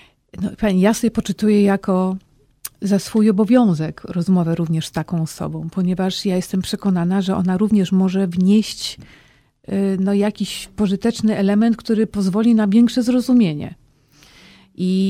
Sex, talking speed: female, 125 wpm